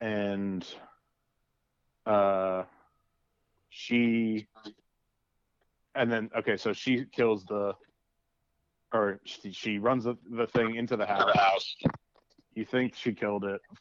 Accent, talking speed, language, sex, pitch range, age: American, 105 wpm, English, male, 100-115 Hz, 30-49